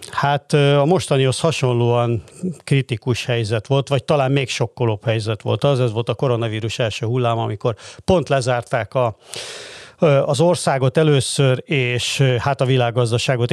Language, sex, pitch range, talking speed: Hungarian, male, 115-140 Hz, 140 wpm